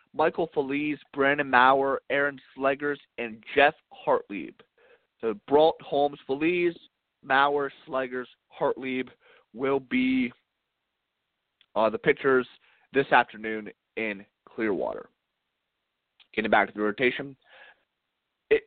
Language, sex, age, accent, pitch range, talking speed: English, male, 20-39, American, 125-150 Hz, 100 wpm